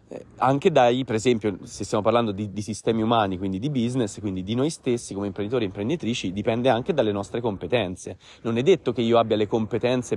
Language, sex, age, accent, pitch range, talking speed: Italian, male, 30-49, native, 105-130 Hz, 205 wpm